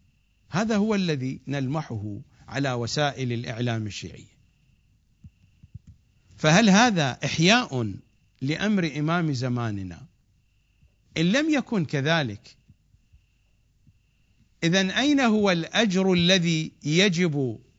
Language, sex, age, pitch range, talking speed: English, male, 50-69, 105-155 Hz, 80 wpm